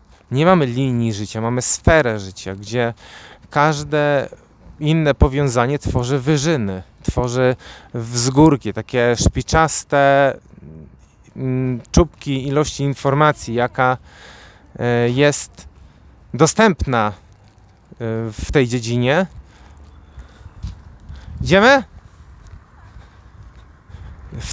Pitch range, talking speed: 95-145 Hz, 70 wpm